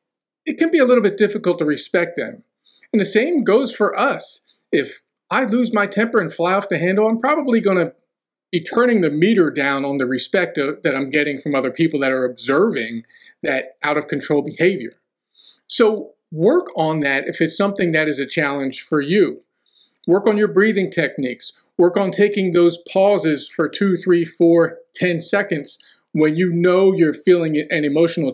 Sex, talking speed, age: male, 190 wpm, 40-59